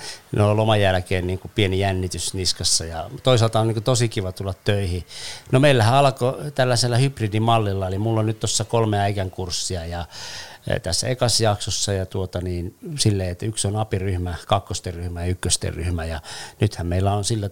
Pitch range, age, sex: 90-115 Hz, 50-69, male